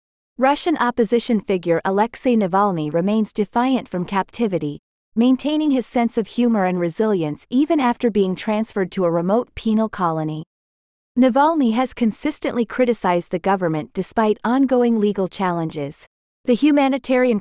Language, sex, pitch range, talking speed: English, female, 185-245 Hz, 130 wpm